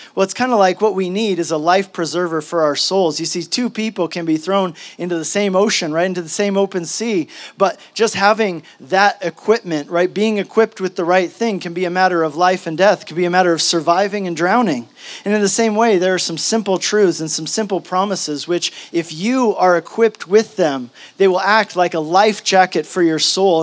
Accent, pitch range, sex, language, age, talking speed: American, 165-200 Hz, male, English, 40-59, 230 wpm